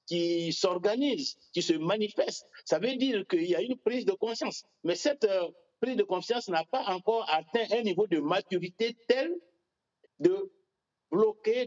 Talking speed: 160 wpm